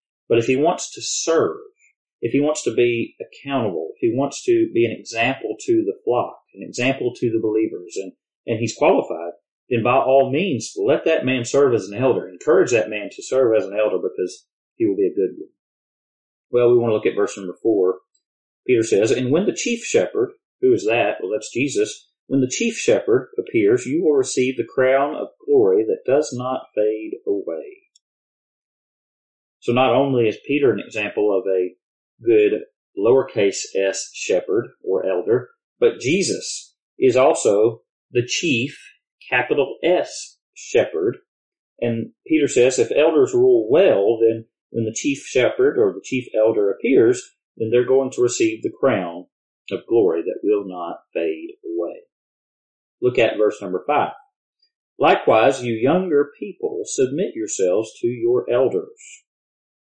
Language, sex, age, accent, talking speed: English, male, 40-59, American, 165 wpm